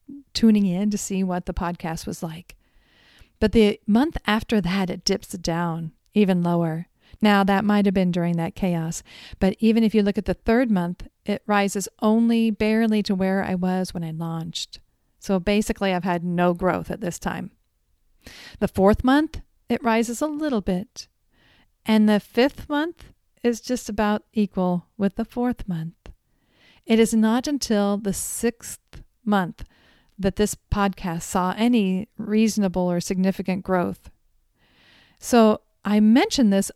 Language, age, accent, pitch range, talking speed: English, 40-59, American, 185-230 Hz, 155 wpm